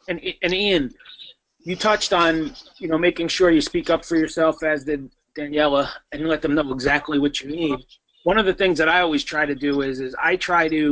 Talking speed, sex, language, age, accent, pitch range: 225 wpm, male, English, 30-49, American, 140-165 Hz